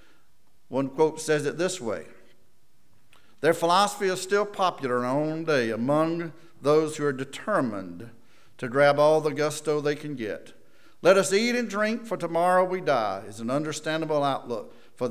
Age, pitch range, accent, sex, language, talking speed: 50-69, 130-170 Hz, American, male, English, 165 wpm